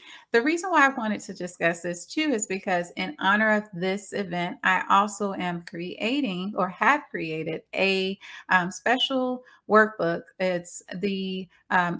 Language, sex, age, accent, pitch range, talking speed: English, female, 30-49, American, 170-215 Hz, 150 wpm